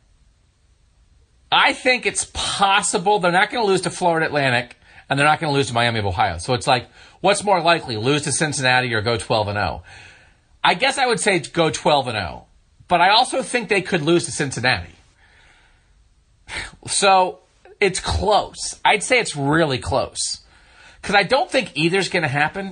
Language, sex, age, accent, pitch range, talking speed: English, male, 40-59, American, 140-195 Hz, 190 wpm